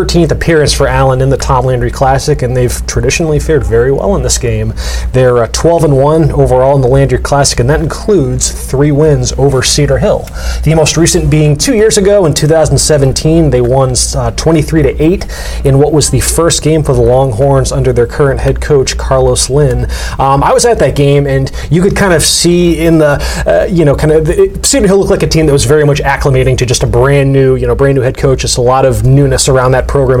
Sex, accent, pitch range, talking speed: male, American, 130-150 Hz, 230 wpm